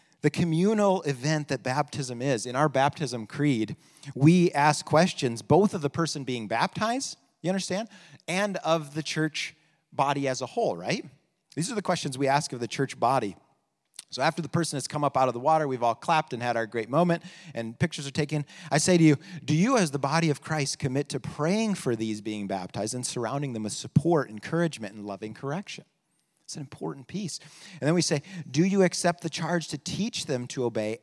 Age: 40-59